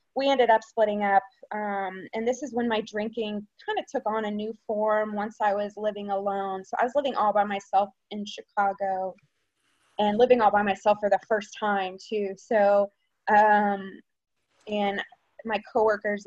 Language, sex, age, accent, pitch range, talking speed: English, female, 20-39, American, 200-235 Hz, 175 wpm